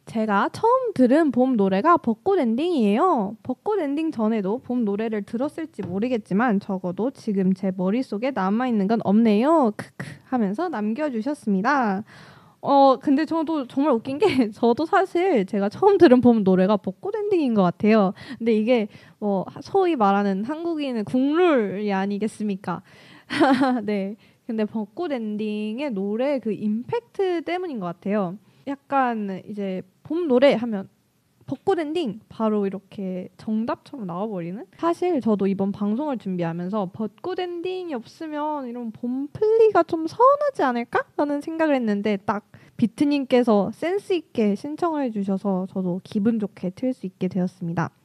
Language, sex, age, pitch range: Korean, female, 20-39, 200-295 Hz